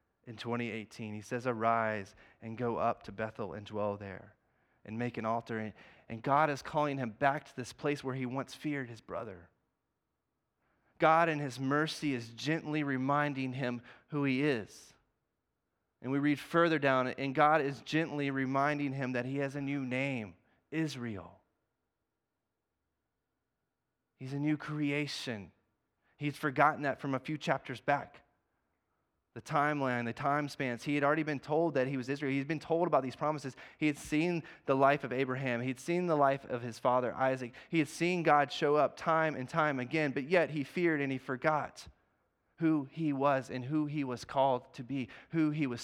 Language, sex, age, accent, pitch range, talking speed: English, male, 30-49, American, 125-150 Hz, 185 wpm